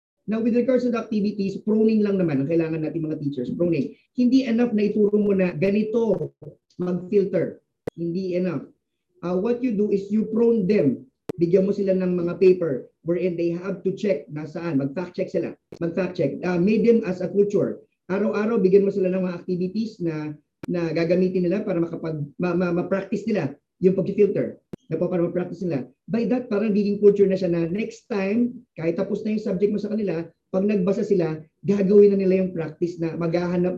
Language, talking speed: Filipino, 190 wpm